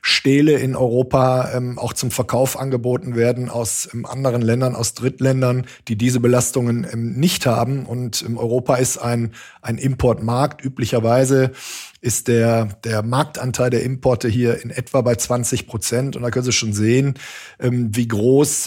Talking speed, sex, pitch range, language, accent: 160 wpm, male, 115-135 Hz, German, German